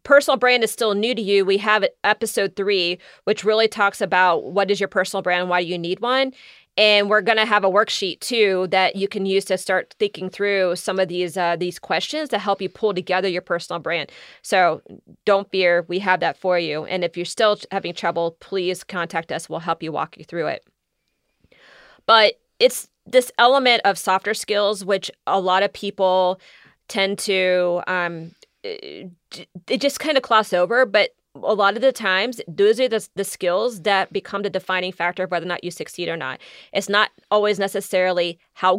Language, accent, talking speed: English, American, 200 wpm